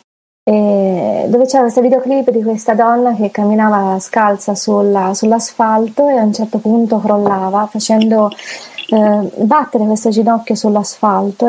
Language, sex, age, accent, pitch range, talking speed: Italian, female, 30-49, native, 210-255 Hz, 125 wpm